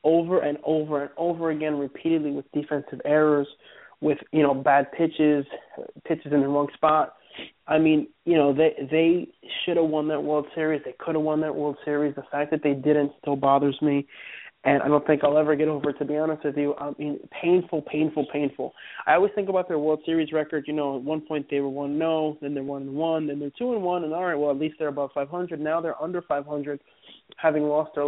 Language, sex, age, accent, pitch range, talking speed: English, male, 20-39, American, 145-160 Hz, 225 wpm